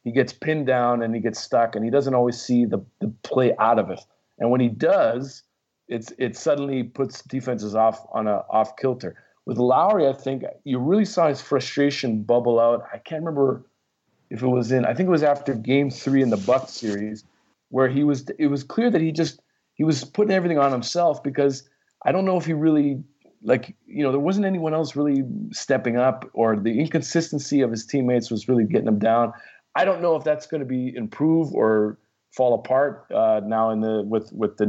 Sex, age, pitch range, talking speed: male, 40-59, 115-140 Hz, 215 wpm